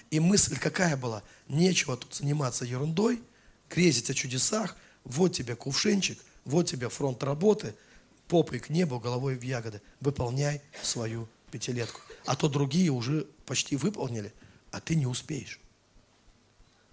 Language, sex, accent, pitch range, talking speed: Russian, male, native, 125-190 Hz, 130 wpm